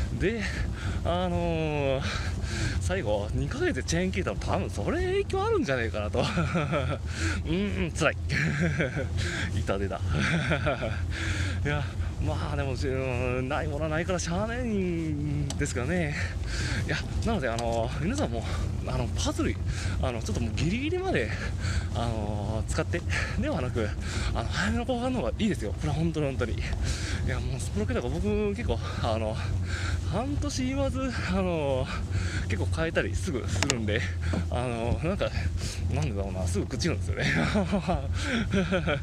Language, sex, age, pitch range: Japanese, male, 20-39, 90-110 Hz